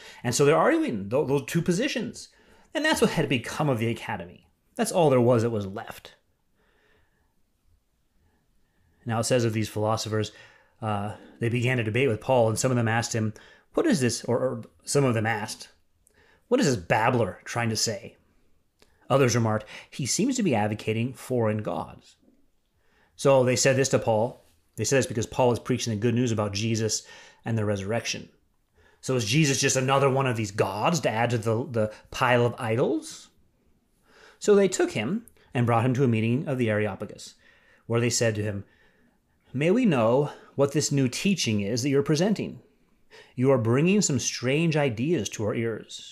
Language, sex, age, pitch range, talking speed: English, male, 30-49, 110-140 Hz, 185 wpm